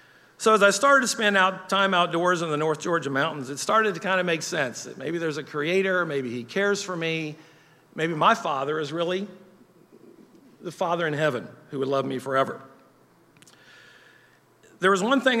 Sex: male